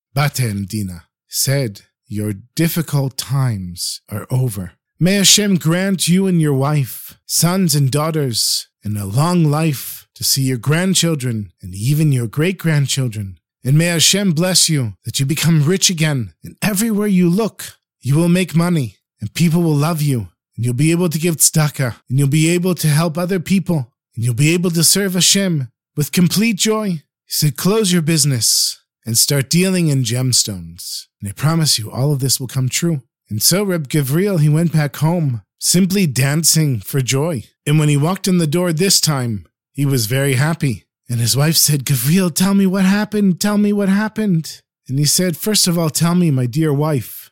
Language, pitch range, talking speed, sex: English, 130-175 Hz, 190 wpm, male